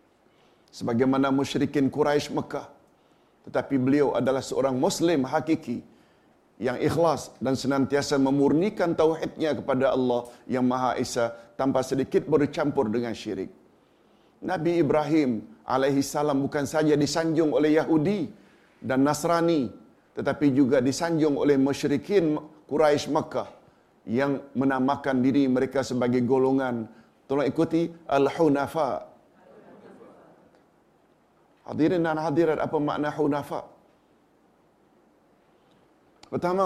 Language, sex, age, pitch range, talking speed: Malayalam, male, 50-69, 140-170 Hz, 95 wpm